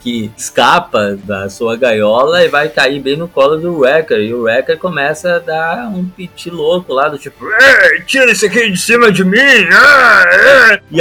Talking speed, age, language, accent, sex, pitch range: 180 wpm, 20-39, Portuguese, Brazilian, male, 115-190 Hz